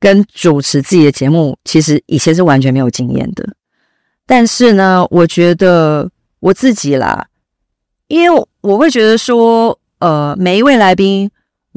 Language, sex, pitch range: Chinese, female, 170-235 Hz